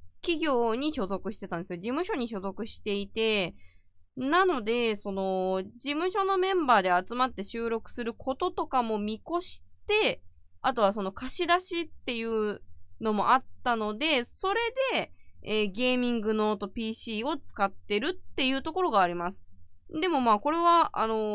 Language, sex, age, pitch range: Japanese, female, 20-39, 195-295 Hz